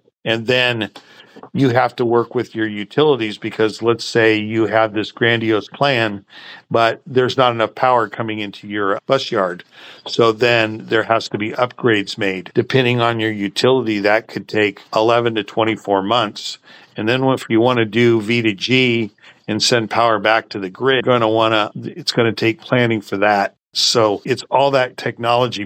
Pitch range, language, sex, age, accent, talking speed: 105-125 Hz, English, male, 50-69, American, 185 wpm